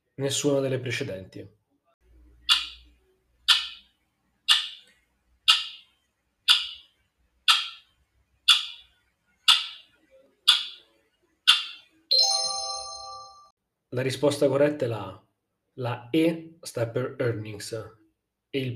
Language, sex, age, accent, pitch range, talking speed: Italian, male, 30-49, native, 115-145 Hz, 50 wpm